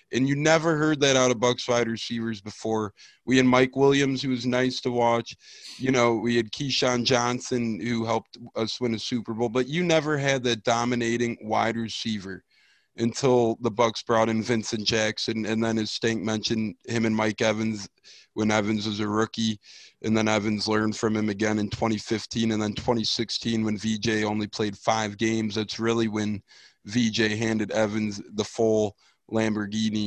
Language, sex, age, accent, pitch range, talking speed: English, male, 20-39, American, 110-125 Hz, 180 wpm